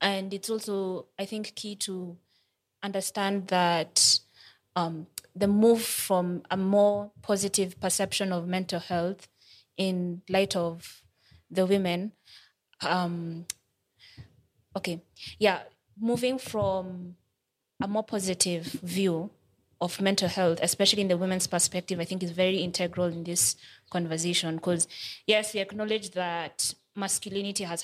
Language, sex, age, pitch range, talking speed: English, female, 20-39, 175-200 Hz, 125 wpm